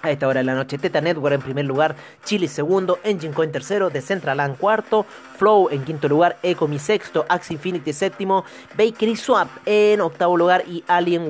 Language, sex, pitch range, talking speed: Spanish, male, 135-195 Hz, 180 wpm